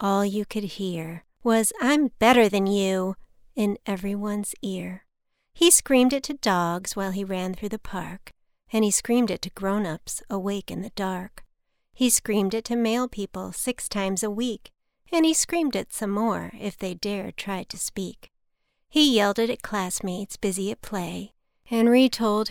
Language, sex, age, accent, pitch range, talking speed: English, female, 40-59, American, 195-235 Hz, 175 wpm